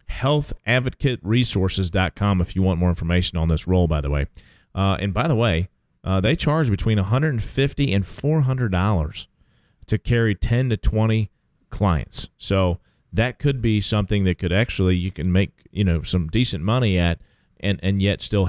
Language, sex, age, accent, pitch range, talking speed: English, male, 40-59, American, 90-120 Hz, 170 wpm